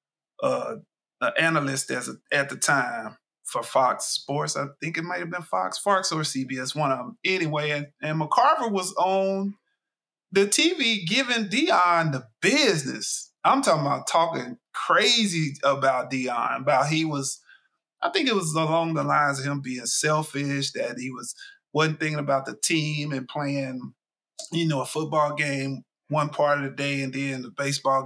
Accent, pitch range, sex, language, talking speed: American, 140-205 Hz, male, English, 175 wpm